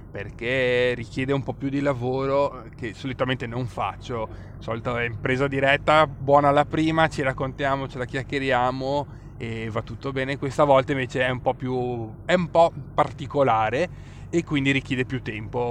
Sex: male